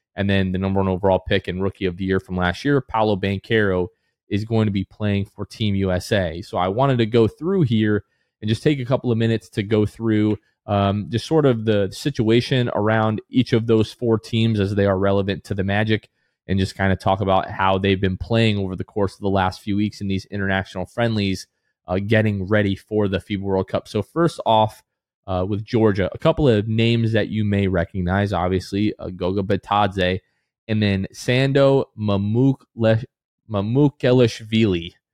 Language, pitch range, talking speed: English, 95-115 Hz, 195 wpm